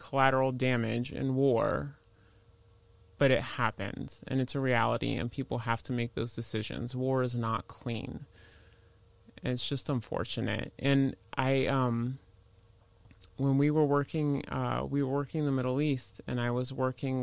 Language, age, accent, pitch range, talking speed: English, 20-39, American, 115-155 Hz, 155 wpm